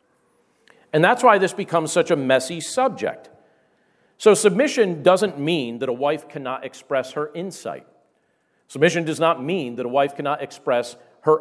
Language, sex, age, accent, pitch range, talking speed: English, male, 50-69, American, 120-175 Hz, 160 wpm